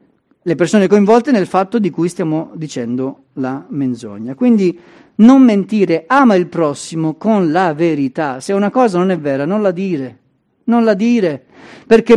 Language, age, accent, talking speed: Italian, 40-59, native, 165 wpm